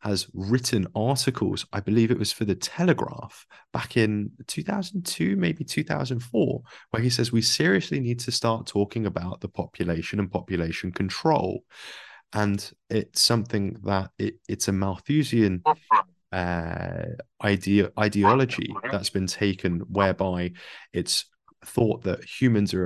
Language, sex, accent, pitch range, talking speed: English, male, British, 95-125 Hz, 125 wpm